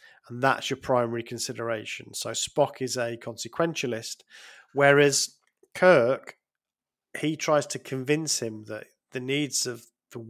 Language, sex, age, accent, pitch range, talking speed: English, male, 40-59, British, 120-150 Hz, 130 wpm